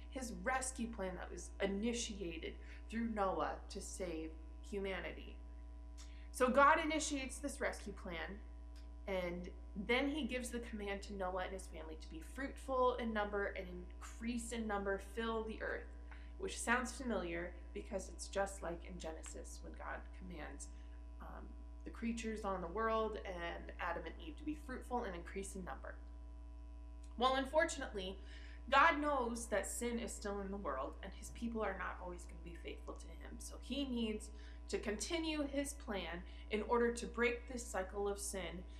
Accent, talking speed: American, 165 wpm